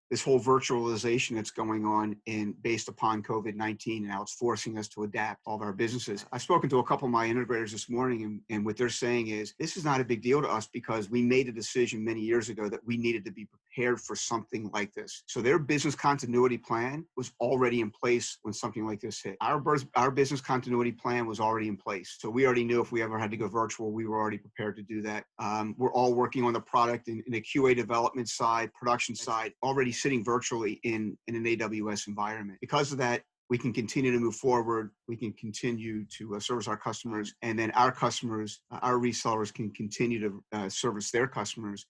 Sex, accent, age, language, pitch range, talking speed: male, American, 40-59, English, 110-125 Hz, 225 wpm